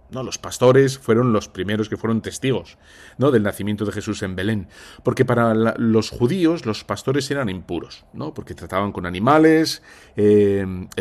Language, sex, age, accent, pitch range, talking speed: Spanish, male, 40-59, Spanish, 100-125 Hz, 170 wpm